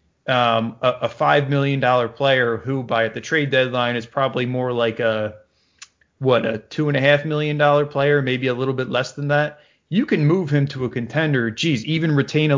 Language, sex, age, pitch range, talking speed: English, male, 30-49, 120-145 Hz, 210 wpm